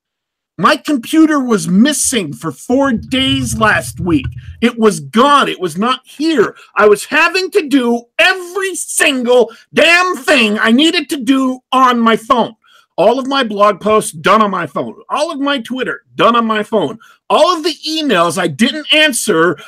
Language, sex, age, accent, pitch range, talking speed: English, male, 50-69, American, 220-310 Hz, 170 wpm